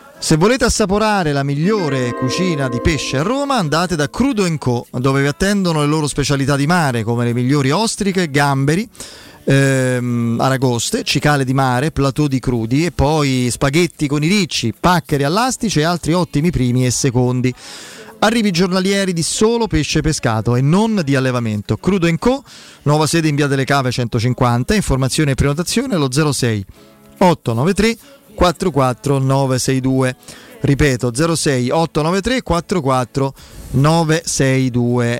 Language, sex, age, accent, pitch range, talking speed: Italian, male, 30-49, native, 130-175 Hz, 135 wpm